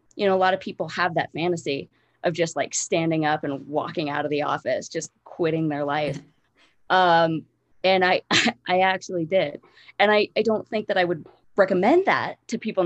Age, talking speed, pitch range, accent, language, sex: 20-39, 195 wpm, 150-185 Hz, American, English, female